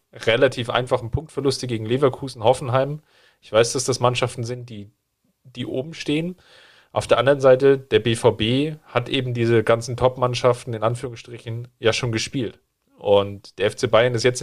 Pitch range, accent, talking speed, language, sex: 115-130 Hz, German, 160 wpm, German, male